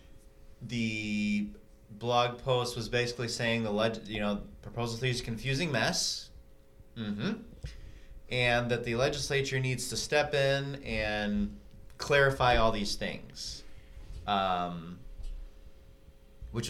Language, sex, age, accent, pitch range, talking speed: English, male, 30-49, American, 100-120 Hz, 115 wpm